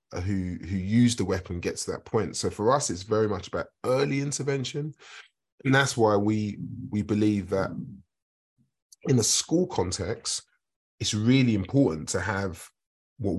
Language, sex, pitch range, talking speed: English, male, 90-115 Hz, 155 wpm